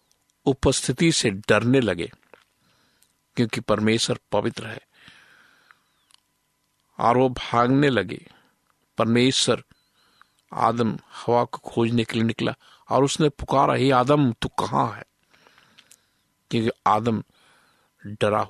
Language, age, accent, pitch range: Hindi, 50-69, native, 110-135 Hz